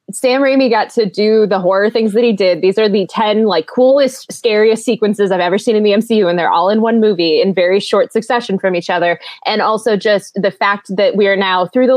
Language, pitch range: English, 175-220 Hz